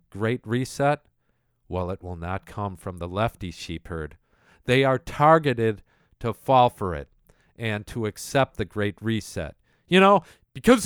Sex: male